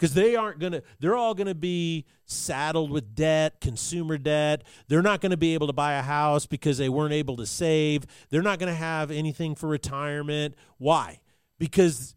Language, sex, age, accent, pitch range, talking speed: English, male, 40-59, American, 125-160 Hz, 200 wpm